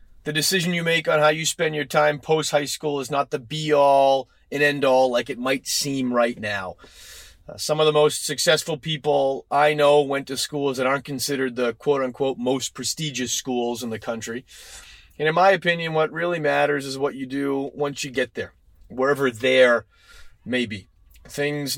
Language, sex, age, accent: English, male, 30-49, American